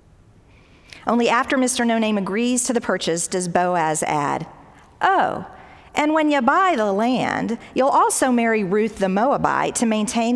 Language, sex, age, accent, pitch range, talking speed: English, female, 40-59, American, 185-245 Hz, 150 wpm